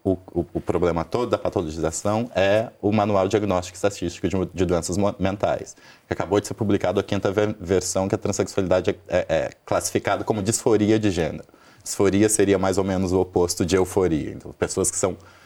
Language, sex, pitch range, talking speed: Portuguese, male, 95-115 Hz, 190 wpm